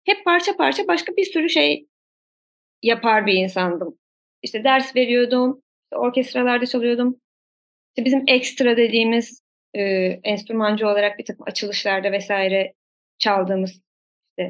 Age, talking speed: 30-49, 110 wpm